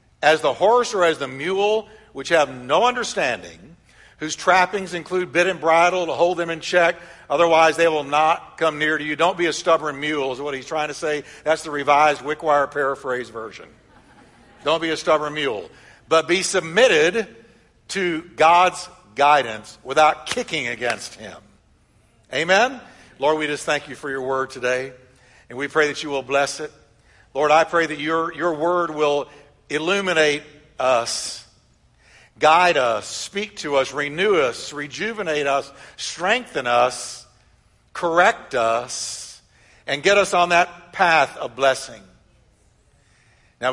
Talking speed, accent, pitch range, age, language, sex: 155 wpm, American, 140-175 Hz, 60-79, English, male